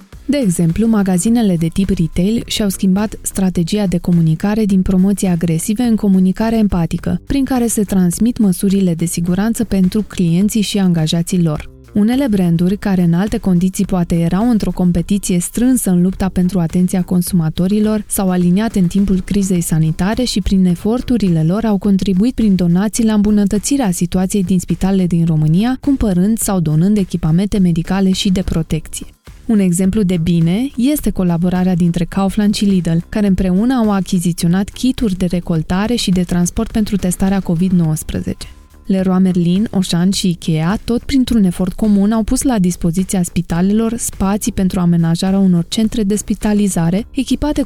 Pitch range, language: 175-210 Hz, Romanian